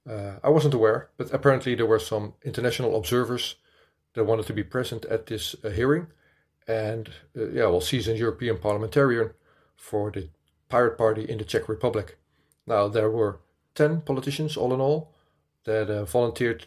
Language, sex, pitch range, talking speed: Dutch, male, 100-125 Hz, 170 wpm